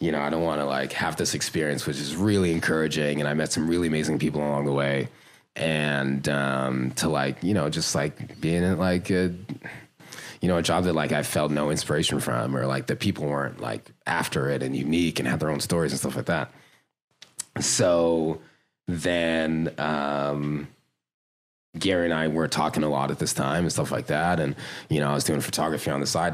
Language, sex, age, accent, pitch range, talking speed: English, male, 30-49, American, 70-85 Hz, 210 wpm